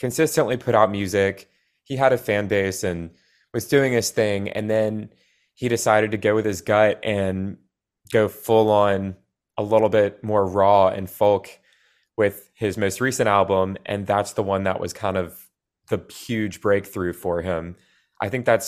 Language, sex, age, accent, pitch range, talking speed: English, male, 20-39, American, 95-115 Hz, 175 wpm